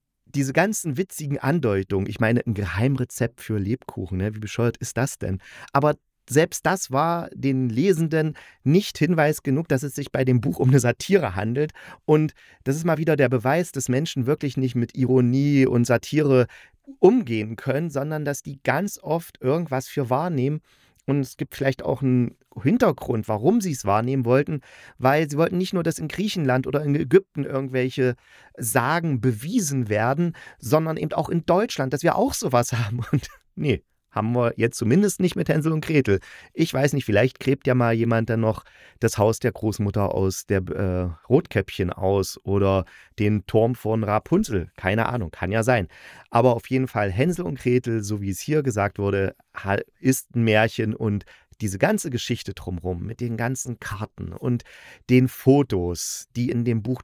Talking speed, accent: 175 wpm, German